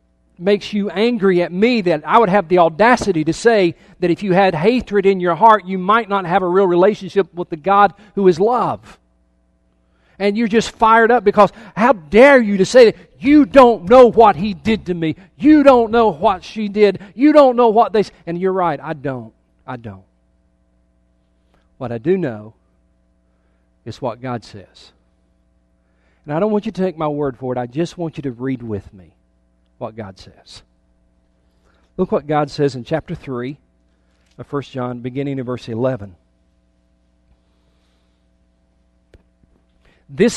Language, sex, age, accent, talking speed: English, male, 40-59, American, 175 wpm